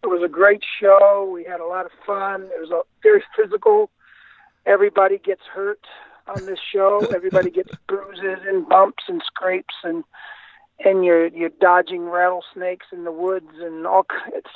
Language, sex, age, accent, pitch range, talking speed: English, male, 60-79, American, 170-250 Hz, 170 wpm